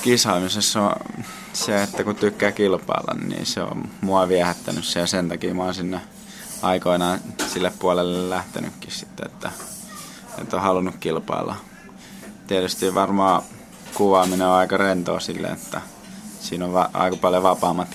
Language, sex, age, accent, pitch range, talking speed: Finnish, male, 20-39, native, 90-95 Hz, 145 wpm